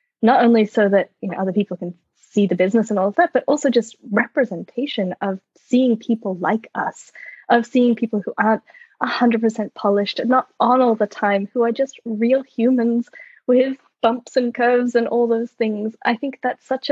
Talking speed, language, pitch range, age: 195 wpm, English, 205-250 Hz, 10-29